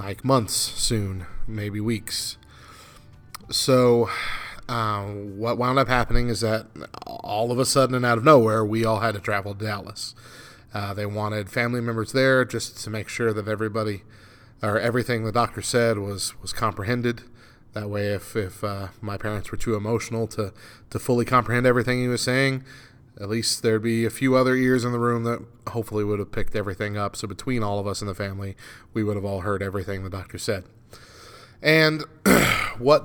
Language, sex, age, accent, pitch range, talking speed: English, male, 30-49, American, 105-120 Hz, 185 wpm